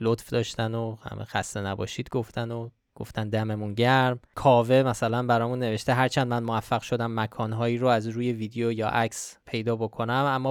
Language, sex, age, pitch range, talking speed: Persian, male, 20-39, 115-135 Hz, 165 wpm